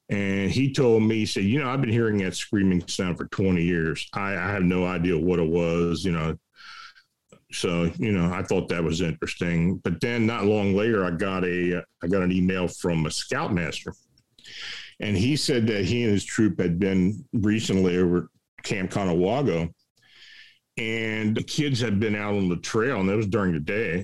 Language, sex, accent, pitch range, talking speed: English, male, American, 90-110 Hz, 195 wpm